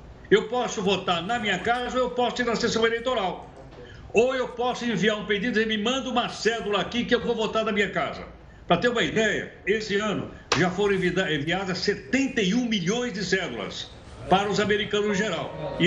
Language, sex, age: Portuguese, male, 60-79